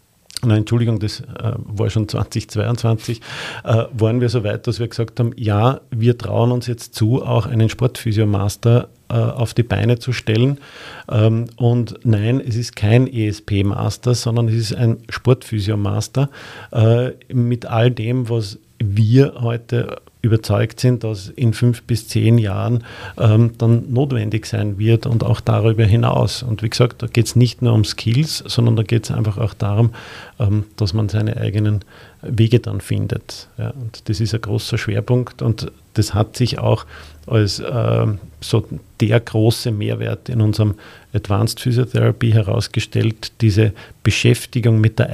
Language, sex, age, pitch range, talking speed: German, male, 50-69, 110-120 Hz, 150 wpm